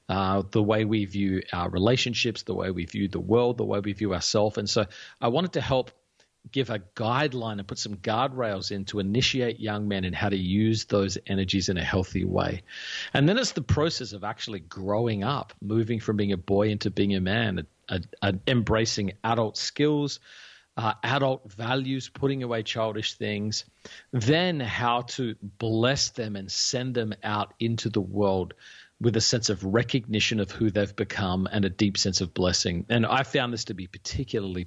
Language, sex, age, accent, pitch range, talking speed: English, male, 40-59, Australian, 100-120 Hz, 190 wpm